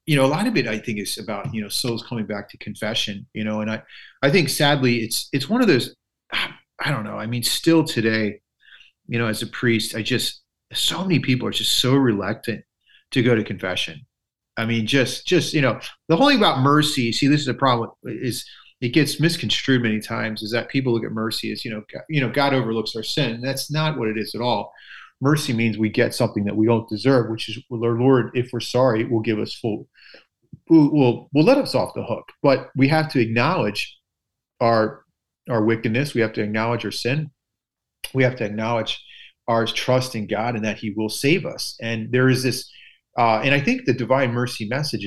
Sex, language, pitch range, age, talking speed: male, English, 110-135 Hz, 30-49, 220 wpm